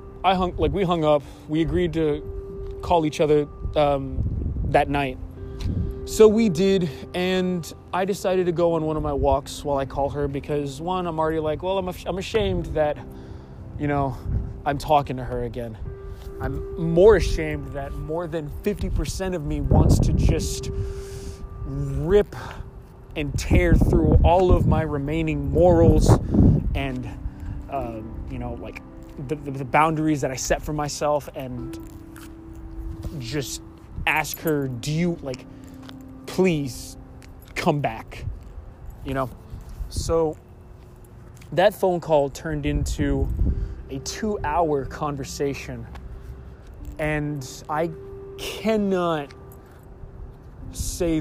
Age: 20-39